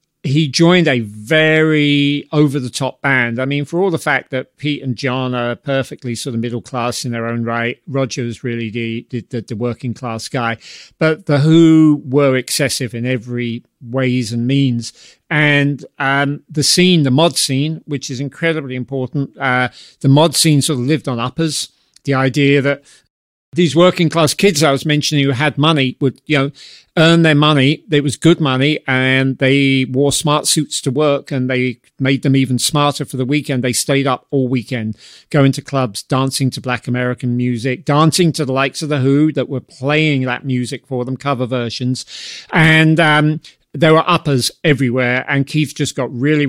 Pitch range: 125-150 Hz